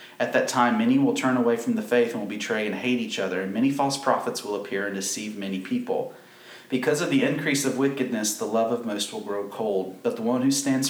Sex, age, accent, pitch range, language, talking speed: male, 30-49, American, 105-140 Hz, English, 250 wpm